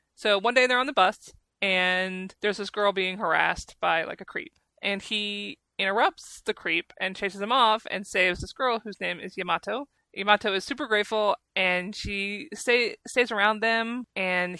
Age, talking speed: 20-39, 185 wpm